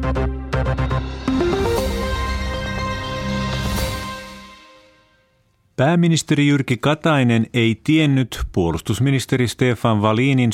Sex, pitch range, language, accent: male, 95-120 Hz, Finnish, native